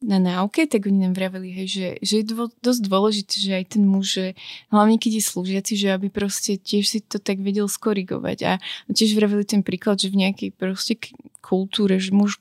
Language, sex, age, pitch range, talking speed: Slovak, female, 20-39, 195-220 Hz, 200 wpm